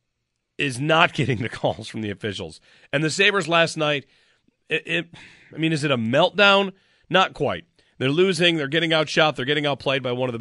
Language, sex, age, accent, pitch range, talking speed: English, male, 40-59, American, 105-150 Hz, 190 wpm